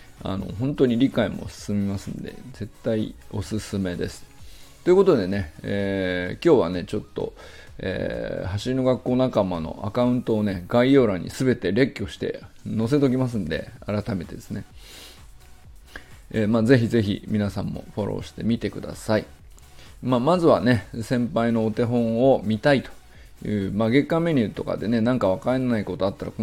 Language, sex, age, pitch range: Japanese, male, 20-39, 100-120 Hz